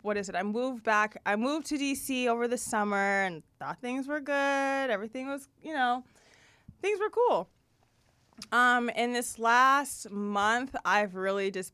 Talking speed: 170 wpm